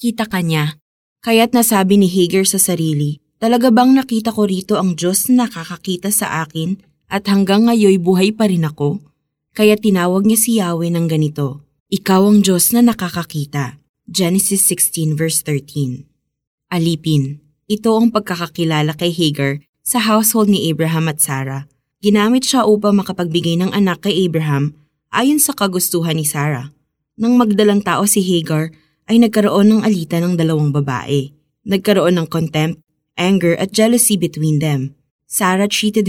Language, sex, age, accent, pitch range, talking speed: Filipino, female, 20-39, native, 150-205 Hz, 145 wpm